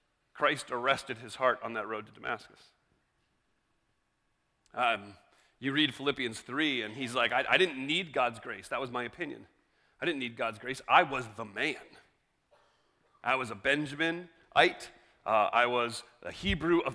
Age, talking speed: 30-49, 165 wpm